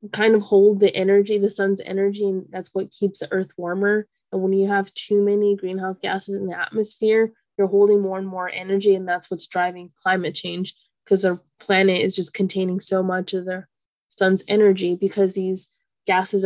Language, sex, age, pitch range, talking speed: English, female, 20-39, 185-200 Hz, 195 wpm